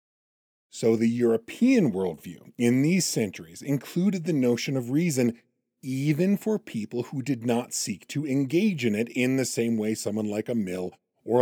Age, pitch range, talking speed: 40-59, 115-155 Hz, 170 wpm